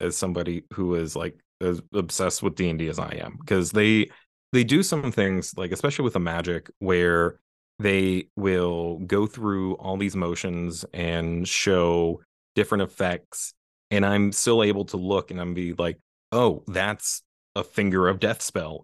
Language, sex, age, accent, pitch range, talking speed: English, male, 30-49, American, 85-100 Hz, 165 wpm